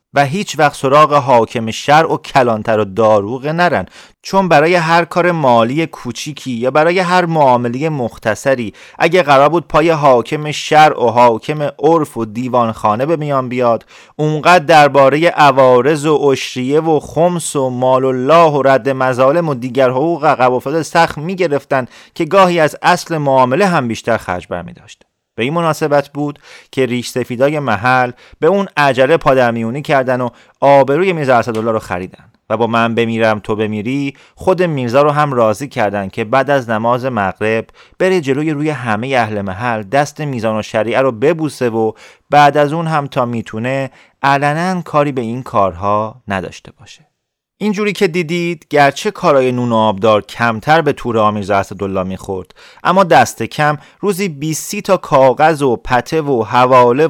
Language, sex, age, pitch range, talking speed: Persian, male, 30-49, 115-155 Hz, 160 wpm